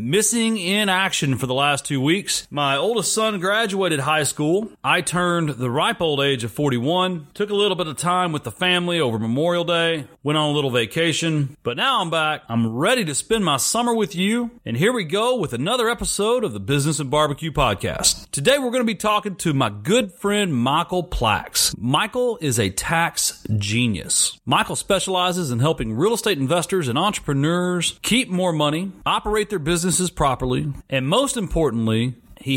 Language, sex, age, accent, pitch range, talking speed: English, male, 40-59, American, 135-205 Hz, 185 wpm